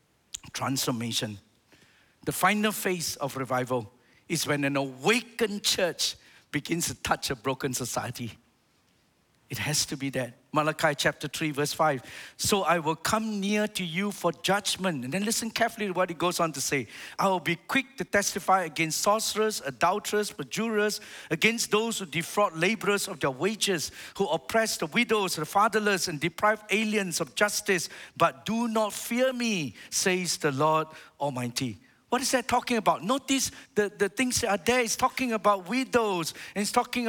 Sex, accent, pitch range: male, Malaysian, 165-235 Hz